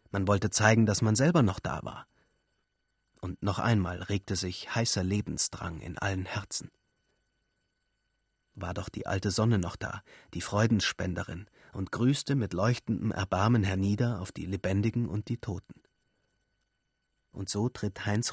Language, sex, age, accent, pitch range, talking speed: German, male, 30-49, German, 95-120 Hz, 145 wpm